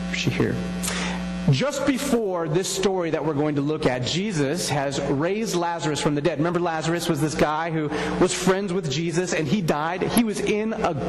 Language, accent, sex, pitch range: English, American, male, 145-190 Hz